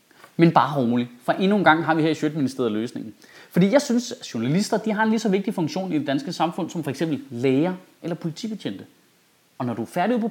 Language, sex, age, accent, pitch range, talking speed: Danish, male, 30-49, native, 155-225 Hz, 240 wpm